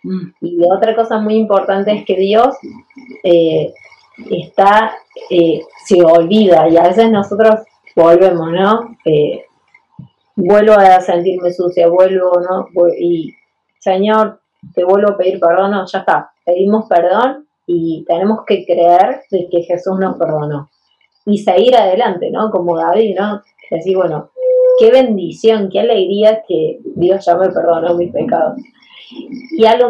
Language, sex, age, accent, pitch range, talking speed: Spanish, female, 20-39, Argentinian, 175-220 Hz, 140 wpm